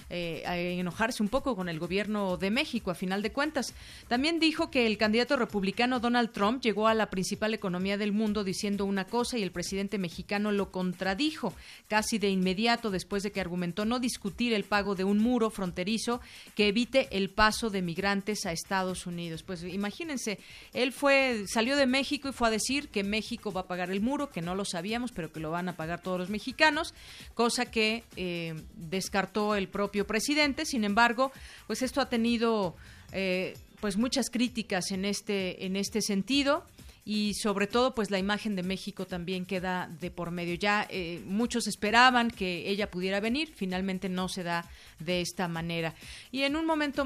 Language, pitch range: Spanish, 185-230 Hz